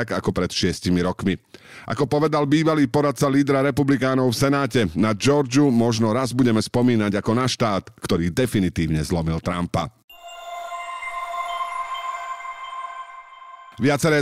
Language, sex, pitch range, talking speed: Slovak, male, 105-135 Hz, 110 wpm